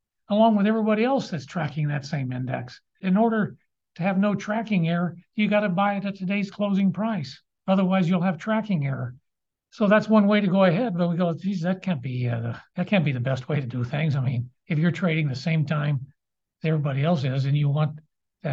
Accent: American